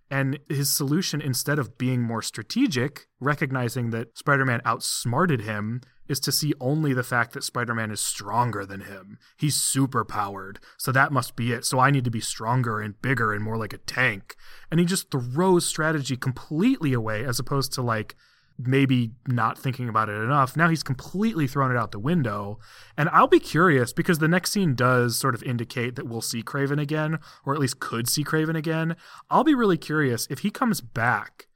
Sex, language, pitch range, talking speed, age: male, English, 115-150 Hz, 195 wpm, 20-39